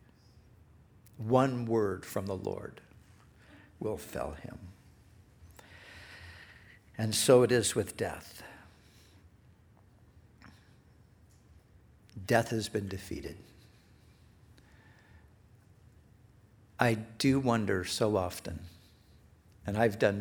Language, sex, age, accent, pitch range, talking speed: English, male, 60-79, American, 95-115 Hz, 75 wpm